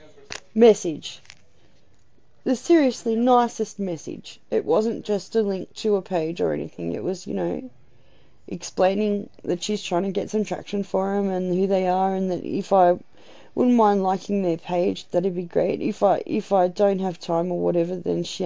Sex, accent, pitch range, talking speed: female, Australian, 180-240 Hz, 180 wpm